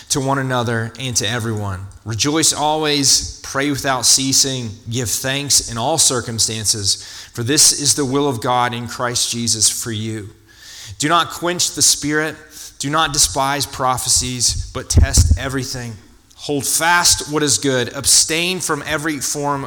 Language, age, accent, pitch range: English, 30-49, American, 105-140 Hz